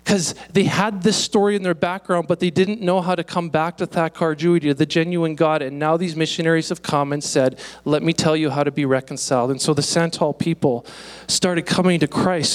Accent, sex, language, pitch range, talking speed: American, male, English, 150-185 Hz, 220 wpm